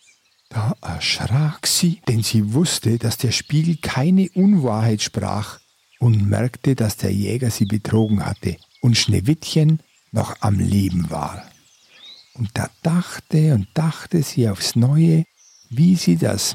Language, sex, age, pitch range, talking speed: German, male, 50-69, 110-165 Hz, 135 wpm